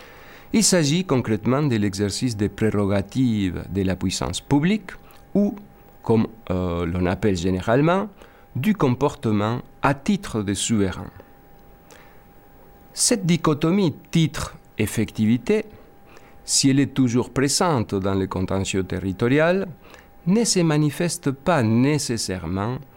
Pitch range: 95-140 Hz